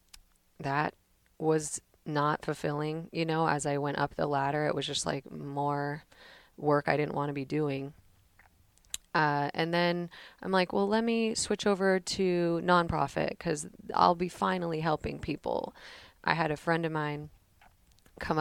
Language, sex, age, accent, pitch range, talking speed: English, female, 30-49, American, 145-170 Hz, 160 wpm